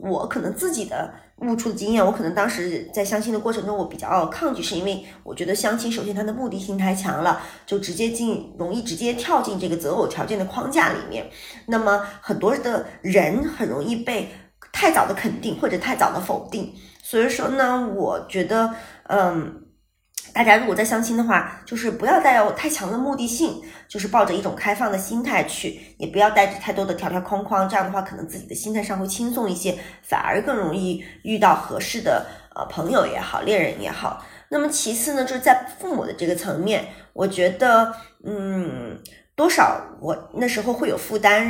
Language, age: Chinese, 20-39